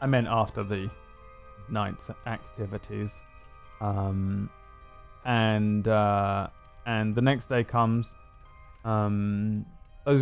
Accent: British